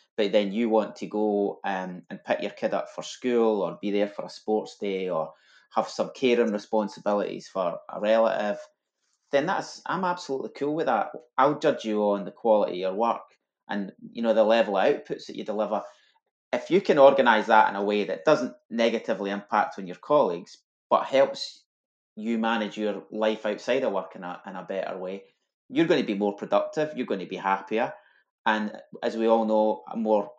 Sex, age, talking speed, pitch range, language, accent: male, 30-49, 205 wpm, 100-120 Hz, English, British